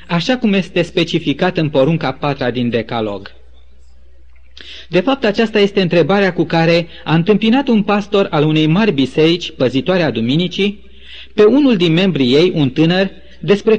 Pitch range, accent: 120-195 Hz, native